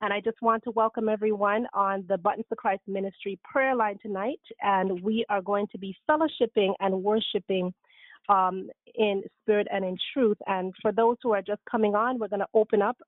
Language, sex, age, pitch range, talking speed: English, female, 30-49, 195-235 Hz, 195 wpm